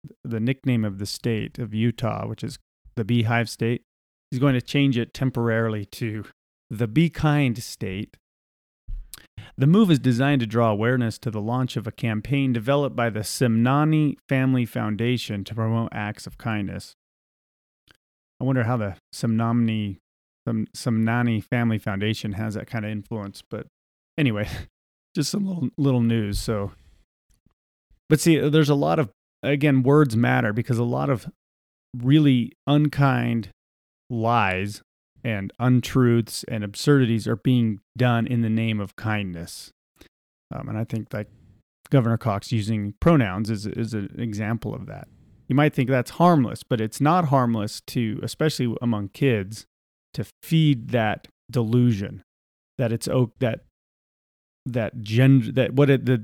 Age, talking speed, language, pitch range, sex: 30-49, 145 wpm, English, 105-130 Hz, male